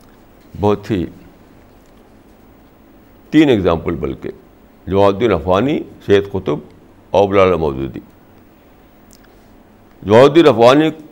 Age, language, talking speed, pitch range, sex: 60-79, Urdu, 75 wpm, 95-125 Hz, male